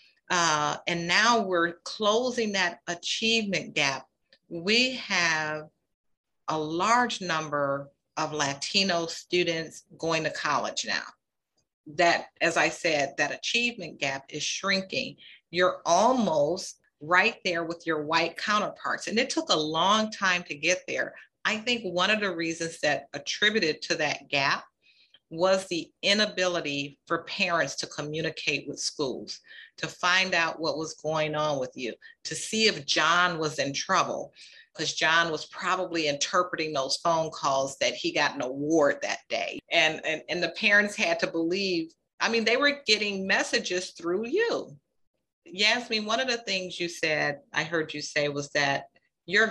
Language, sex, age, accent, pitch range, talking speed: English, female, 40-59, American, 155-200 Hz, 155 wpm